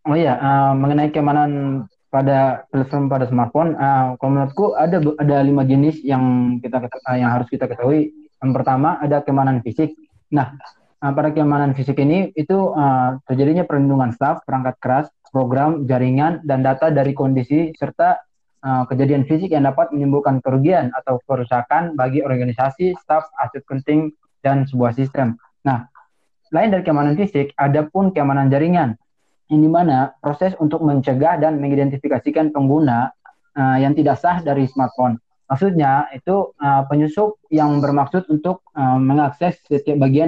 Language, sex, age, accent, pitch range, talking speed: Indonesian, male, 20-39, native, 135-155 Hz, 145 wpm